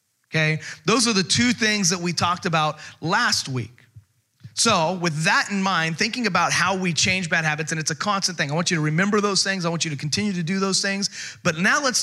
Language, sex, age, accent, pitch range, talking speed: English, male, 30-49, American, 140-195 Hz, 240 wpm